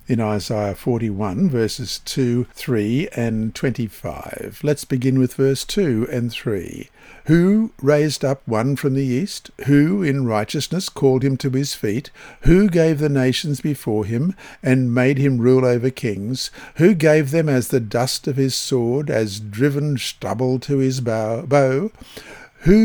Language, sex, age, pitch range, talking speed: English, male, 60-79, 115-145 Hz, 150 wpm